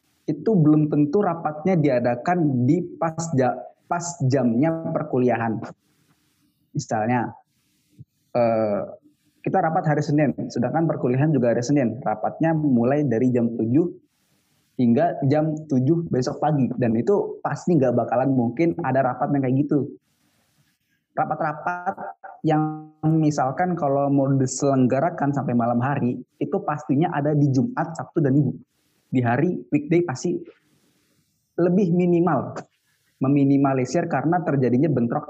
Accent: native